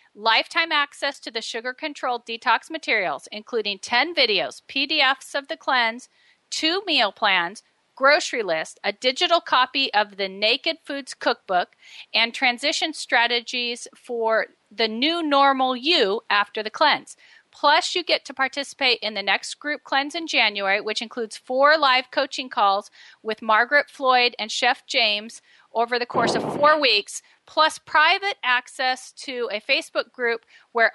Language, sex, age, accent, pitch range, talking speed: English, female, 40-59, American, 220-285 Hz, 145 wpm